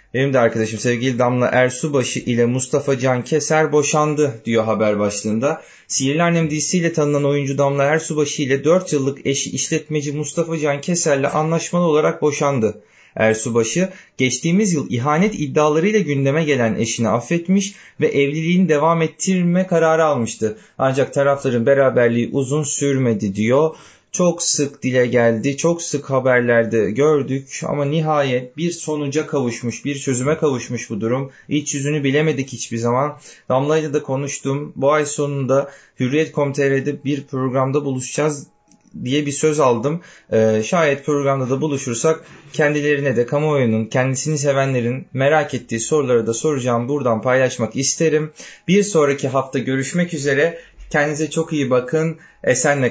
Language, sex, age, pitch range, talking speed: Turkish, male, 30-49, 125-155 Hz, 135 wpm